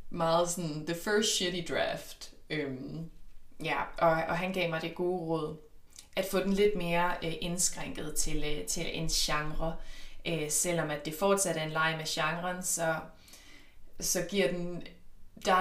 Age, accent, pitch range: 20-39, native, 155-185 Hz